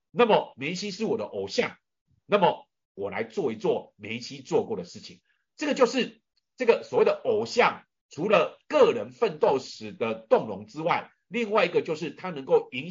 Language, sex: Chinese, male